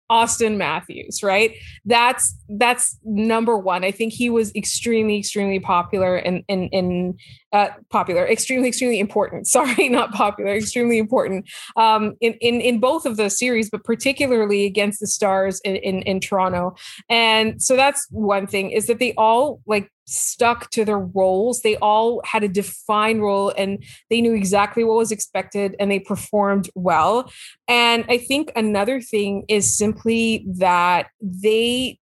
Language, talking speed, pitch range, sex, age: English, 155 wpm, 195-230 Hz, female, 20-39